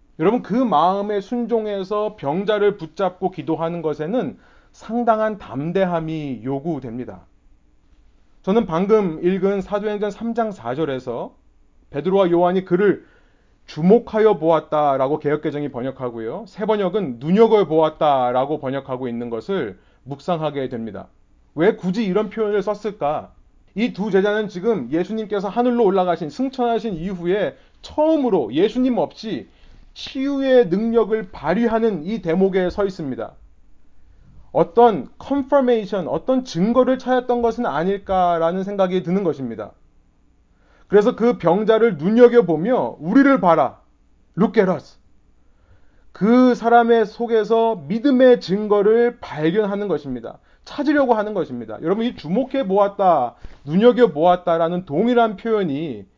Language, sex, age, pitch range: Korean, male, 30-49, 155-230 Hz